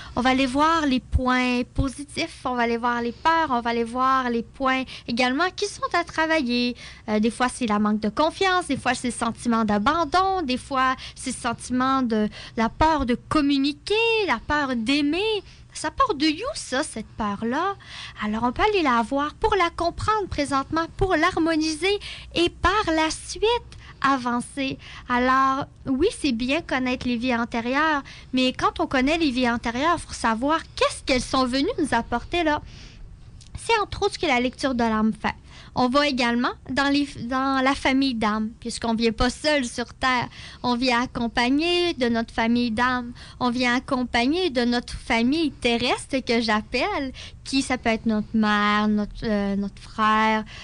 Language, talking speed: French, 175 wpm